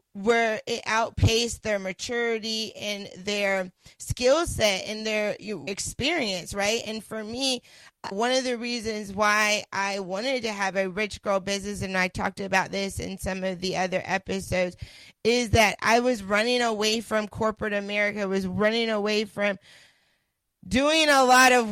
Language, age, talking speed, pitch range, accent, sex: English, 20-39, 155 wpm, 195-225 Hz, American, female